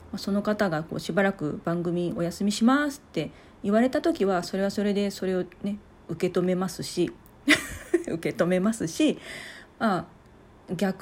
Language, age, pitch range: Japanese, 40-59, 170-220 Hz